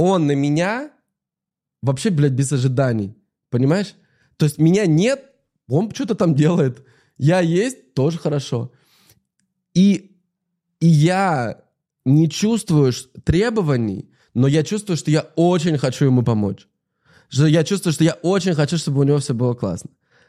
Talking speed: 140 wpm